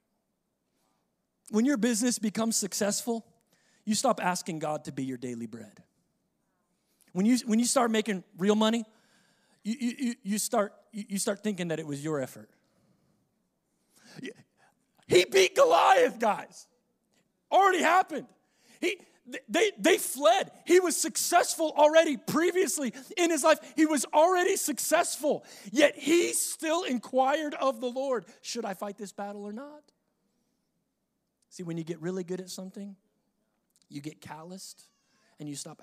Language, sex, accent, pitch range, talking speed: English, male, American, 155-235 Hz, 140 wpm